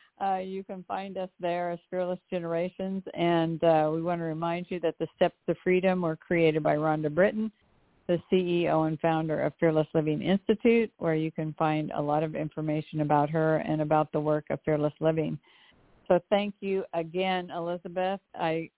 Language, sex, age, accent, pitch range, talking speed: English, female, 60-79, American, 160-190 Hz, 180 wpm